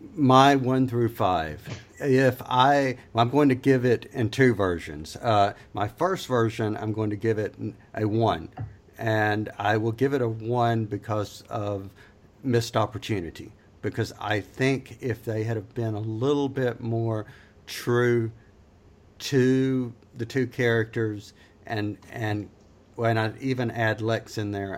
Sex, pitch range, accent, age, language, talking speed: male, 105-120 Hz, American, 50-69, English, 150 wpm